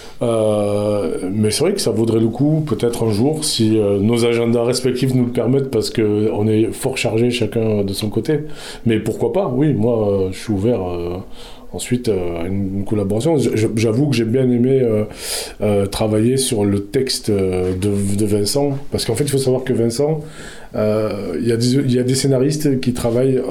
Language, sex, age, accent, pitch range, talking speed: French, male, 20-39, French, 110-130 Hz, 205 wpm